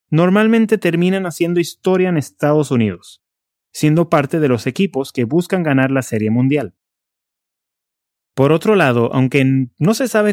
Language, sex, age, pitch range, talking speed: English, male, 30-49, 125-175 Hz, 145 wpm